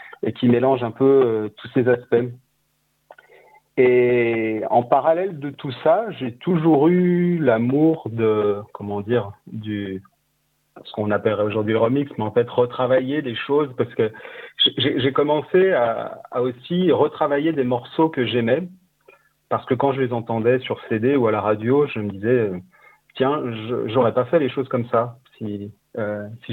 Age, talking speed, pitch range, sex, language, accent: 40-59, 165 wpm, 115-150 Hz, male, French, French